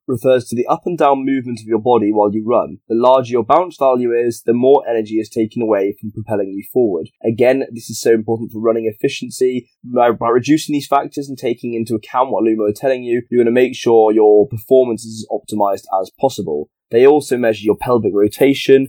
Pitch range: 110-130 Hz